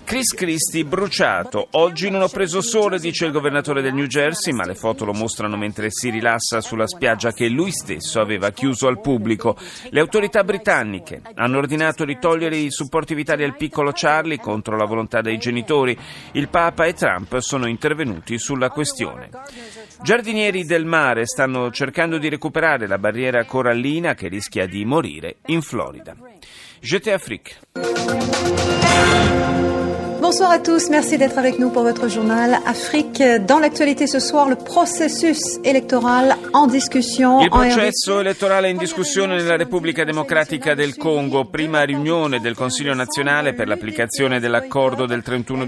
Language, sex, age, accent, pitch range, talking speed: Italian, male, 40-59, native, 120-190 Hz, 145 wpm